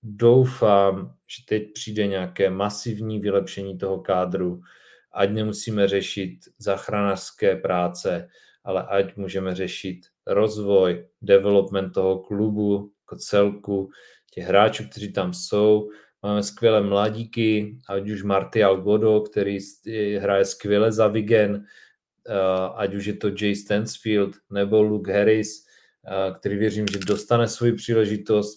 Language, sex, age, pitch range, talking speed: Czech, male, 40-59, 95-110 Hz, 120 wpm